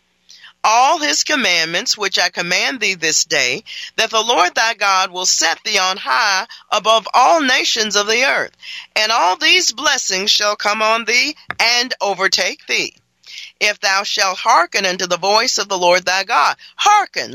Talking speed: 170 wpm